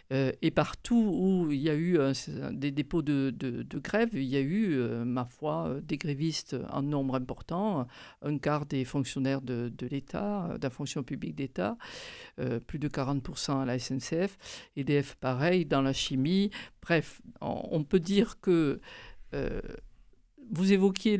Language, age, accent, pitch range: French, 50-69, French, 140-180 Hz